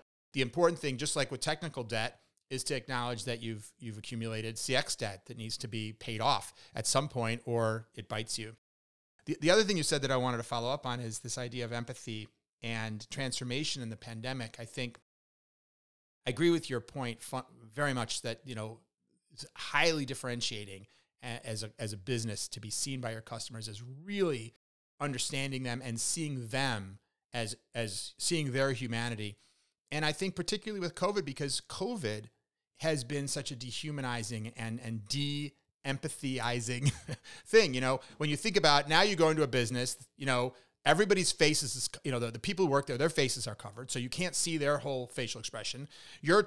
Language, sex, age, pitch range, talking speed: English, male, 30-49, 115-150 Hz, 190 wpm